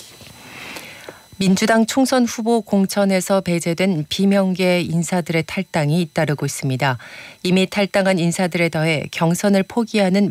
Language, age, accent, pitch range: Korean, 40-59, native, 160-200 Hz